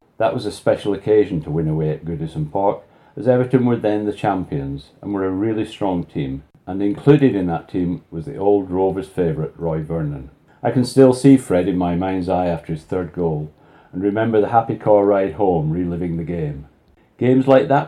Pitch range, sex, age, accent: 85-125 Hz, male, 40-59, British